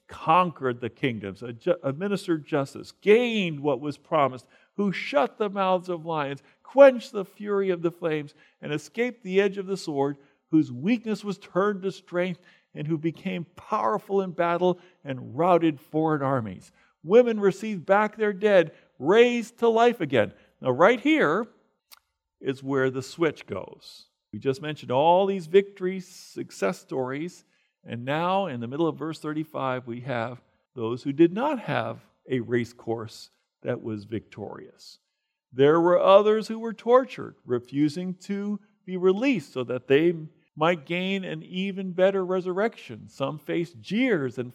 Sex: male